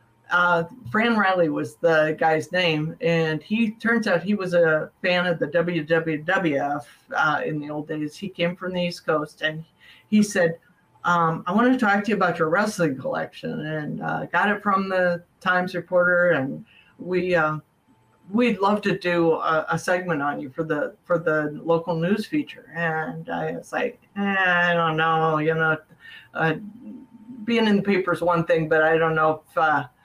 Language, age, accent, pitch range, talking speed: English, 50-69, American, 160-195 Hz, 190 wpm